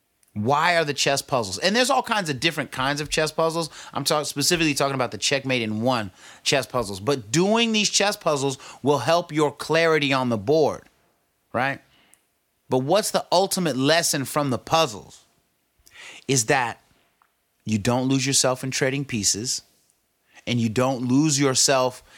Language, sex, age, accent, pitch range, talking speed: English, male, 30-49, American, 110-155 Hz, 160 wpm